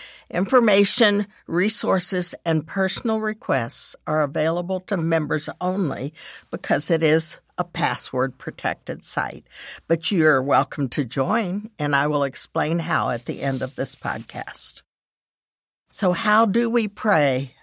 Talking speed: 125 wpm